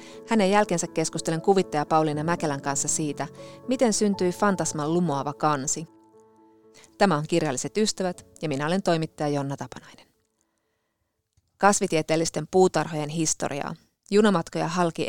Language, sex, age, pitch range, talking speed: Finnish, female, 30-49, 150-180 Hz, 110 wpm